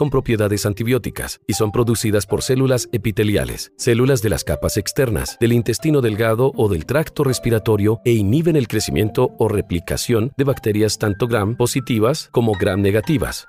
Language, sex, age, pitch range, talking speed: Spanish, male, 40-59, 105-130 Hz, 145 wpm